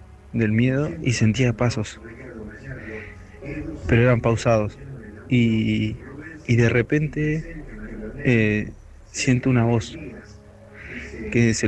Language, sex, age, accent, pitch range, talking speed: Spanish, male, 20-39, Argentinian, 110-125 Hz, 90 wpm